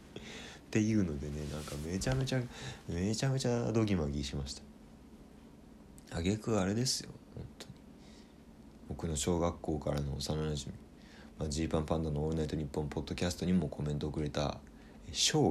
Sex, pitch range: male, 75-100 Hz